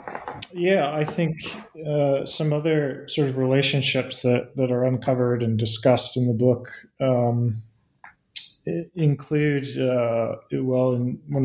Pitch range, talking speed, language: 125-145 Hz, 125 wpm, English